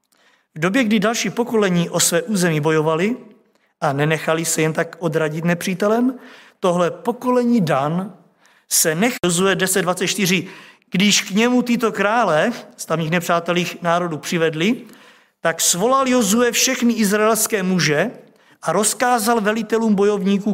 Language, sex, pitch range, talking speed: Czech, male, 185-235 Hz, 120 wpm